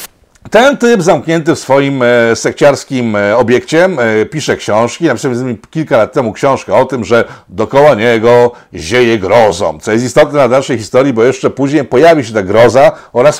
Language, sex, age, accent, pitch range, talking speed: Polish, male, 50-69, native, 120-165 Hz, 160 wpm